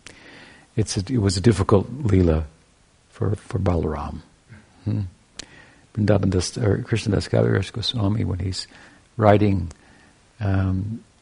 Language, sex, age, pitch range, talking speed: English, male, 60-79, 95-110 Hz, 90 wpm